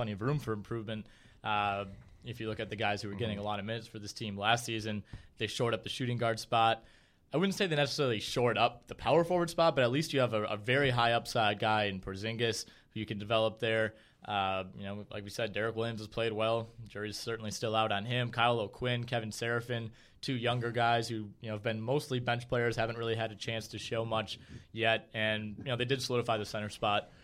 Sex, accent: male, American